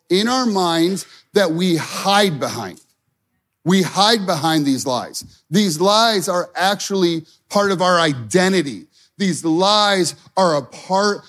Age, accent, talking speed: 30-49, American, 135 wpm